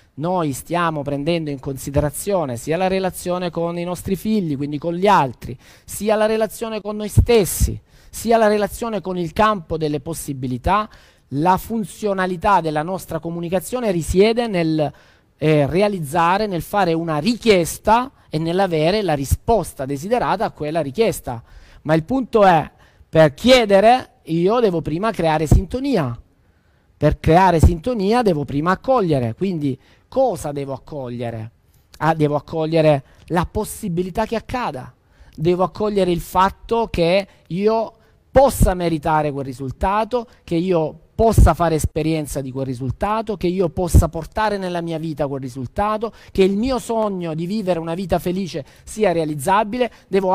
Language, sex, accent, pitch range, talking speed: Italian, male, native, 150-210 Hz, 140 wpm